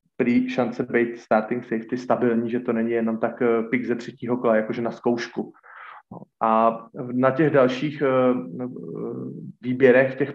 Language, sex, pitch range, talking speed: Slovak, male, 120-135 Hz, 135 wpm